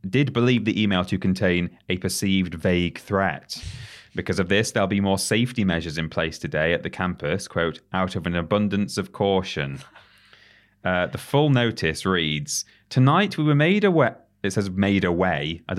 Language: English